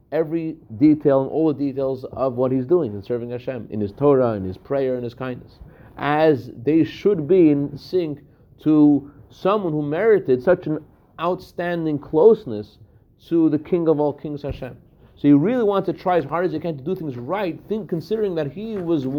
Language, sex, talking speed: English, male, 195 wpm